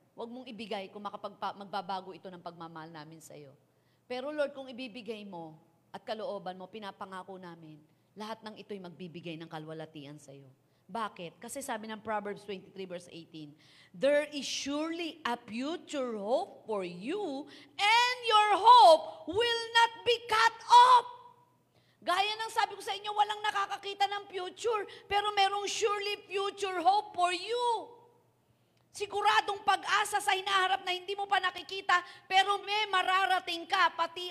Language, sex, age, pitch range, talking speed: Filipino, female, 40-59, 240-390 Hz, 145 wpm